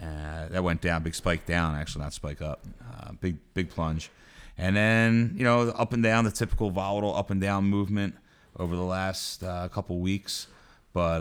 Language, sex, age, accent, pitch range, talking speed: English, male, 30-49, American, 85-105 Hz, 195 wpm